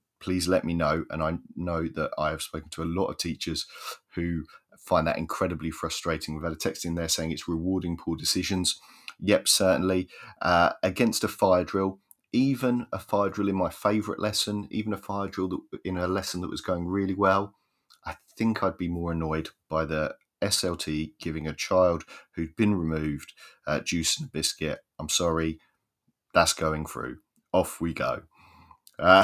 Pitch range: 80-95 Hz